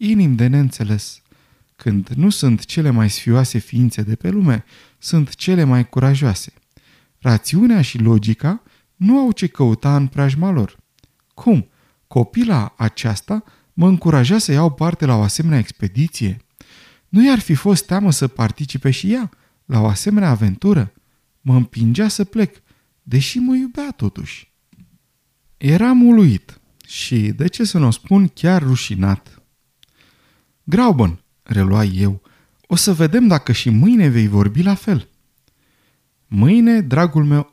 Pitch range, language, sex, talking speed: 115-180 Hz, Romanian, male, 140 wpm